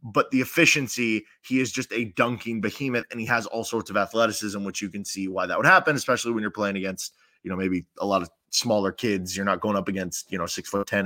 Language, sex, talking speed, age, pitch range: English, male, 255 wpm, 20-39, 110-135 Hz